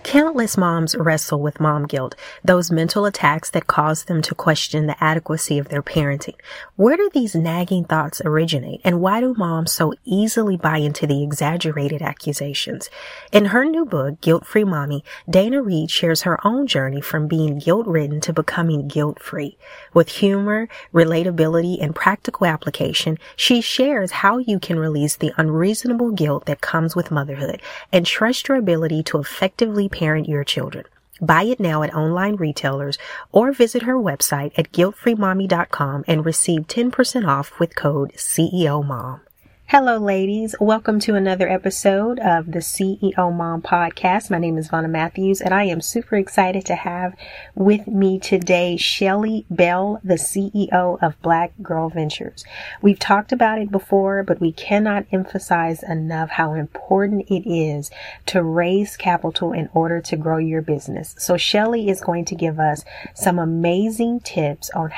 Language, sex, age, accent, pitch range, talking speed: English, female, 30-49, American, 155-200 Hz, 160 wpm